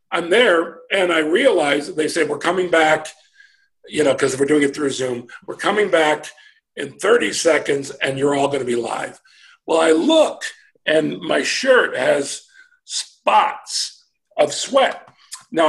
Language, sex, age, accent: English, male, 50-69, American